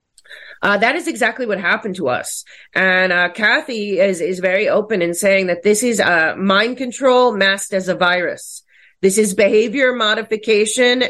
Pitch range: 180-220 Hz